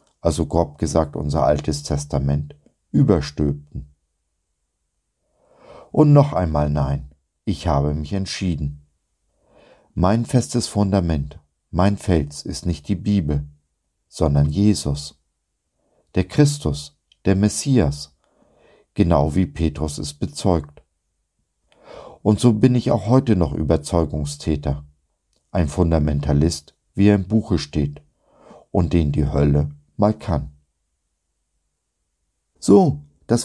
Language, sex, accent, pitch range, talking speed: German, male, German, 75-100 Hz, 105 wpm